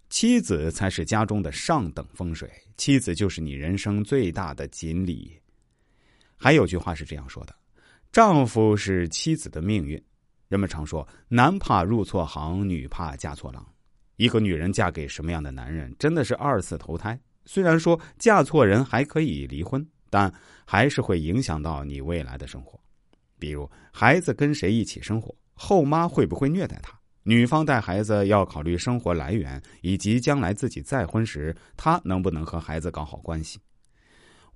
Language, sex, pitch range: Chinese, male, 80-125 Hz